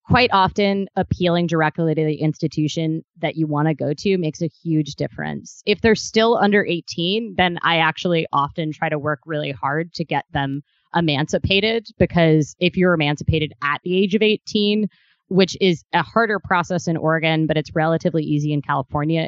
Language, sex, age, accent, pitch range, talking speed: English, female, 20-39, American, 155-200 Hz, 175 wpm